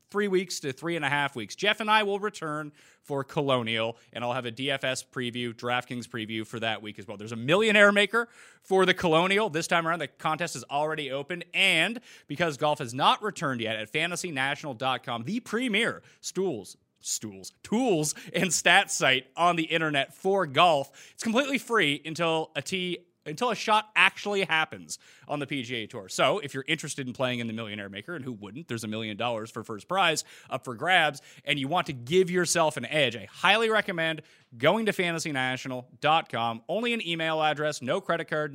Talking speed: 190 wpm